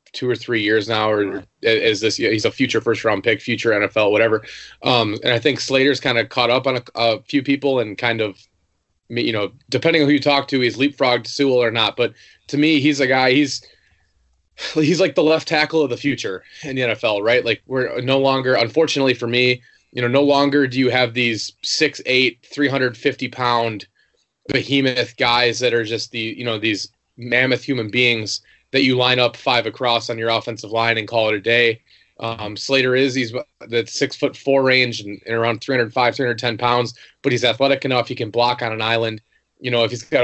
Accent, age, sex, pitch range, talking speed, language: American, 20-39, male, 115-135 Hz, 215 wpm, English